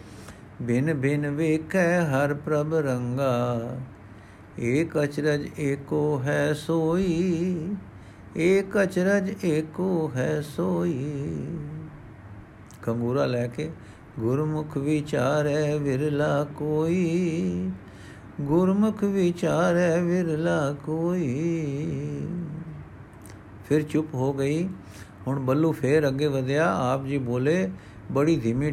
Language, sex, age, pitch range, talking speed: Punjabi, male, 60-79, 120-155 Hz, 85 wpm